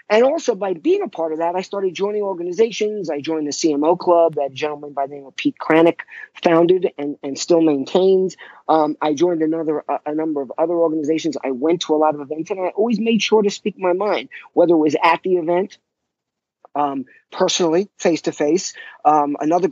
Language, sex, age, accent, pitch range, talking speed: English, male, 40-59, American, 160-250 Hz, 210 wpm